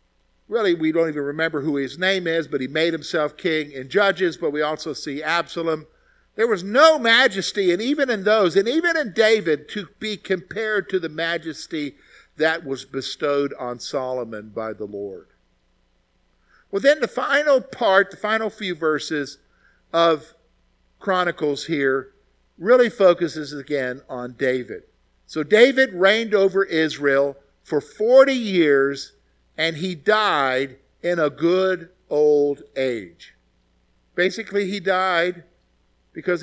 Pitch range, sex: 140-195 Hz, male